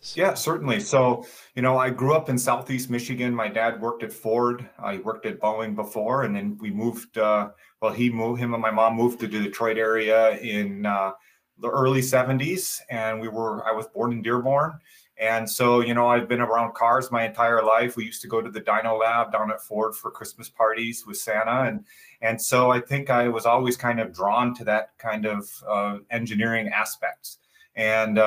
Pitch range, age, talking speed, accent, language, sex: 110-125 Hz, 30-49, 210 wpm, American, English, male